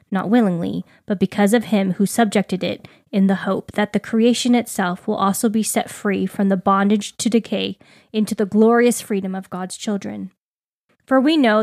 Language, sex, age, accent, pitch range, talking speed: English, female, 10-29, American, 200-240 Hz, 185 wpm